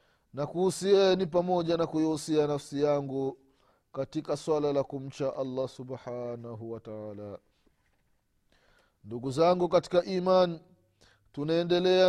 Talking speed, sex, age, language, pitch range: 100 wpm, male, 30-49, Swahili, 140-185 Hz